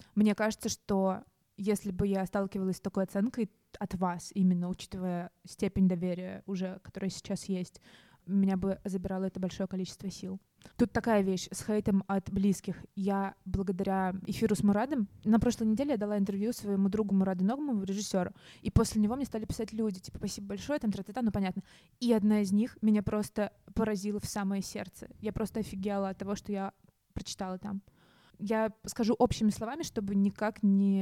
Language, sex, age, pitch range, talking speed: Russian, female, 20-39, 195-215 Hz, 170 wpm